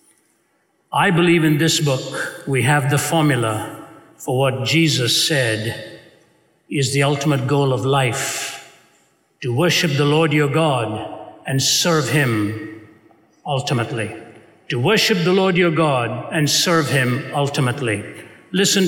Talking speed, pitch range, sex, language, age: 125 wpm, 135-170 Hz, male, English, 60-79